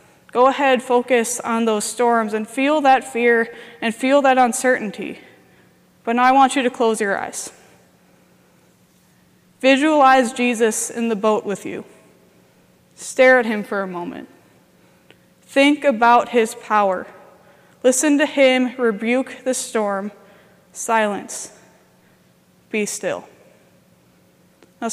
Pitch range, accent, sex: 225-260 Hz, American, female